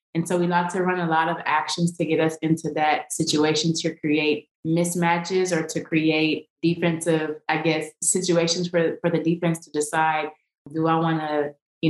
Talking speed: 185 wpm